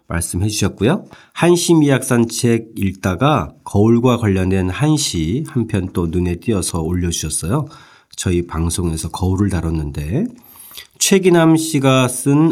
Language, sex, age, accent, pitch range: Korean, male, 40-59, native, 90-125 Hz